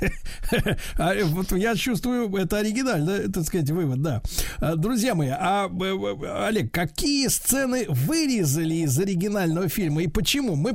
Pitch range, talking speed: 150-195 Hz, 125 wpm